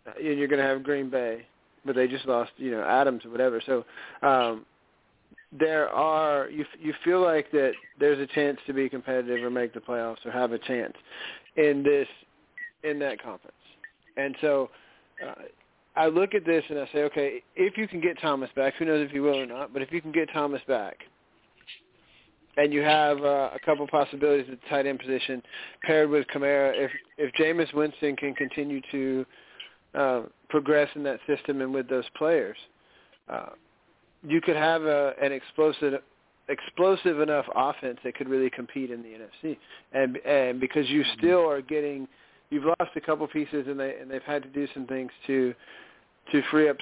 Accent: American